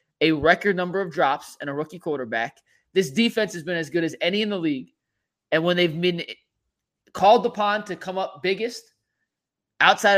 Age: 30-49